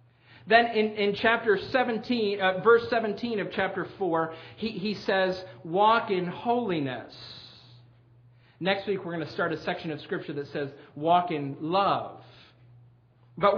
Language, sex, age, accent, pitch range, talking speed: English, male, 40-59, American, 150-205 Hz, 145 wpm